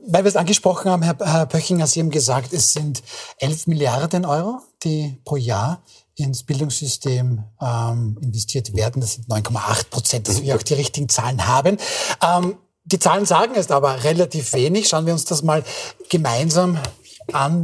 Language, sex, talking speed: German, male, 165 wpm